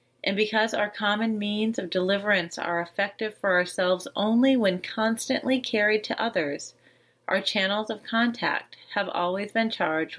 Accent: American